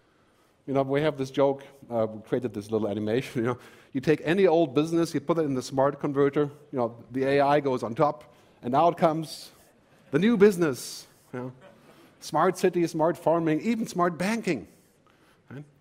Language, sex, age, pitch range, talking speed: English, male, 50-69, 130-180 Hz, 185 wpm